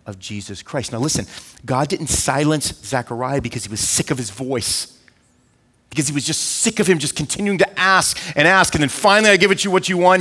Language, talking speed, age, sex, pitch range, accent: English, 235 wpm, 30-49, male, 125-175 Hz, American